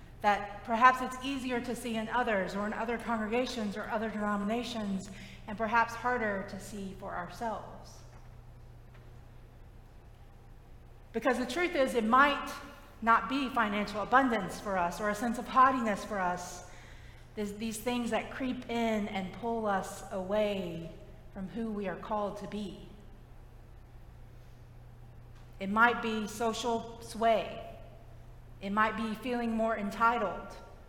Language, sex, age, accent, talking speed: English, female, 40-59, American, 130 wpm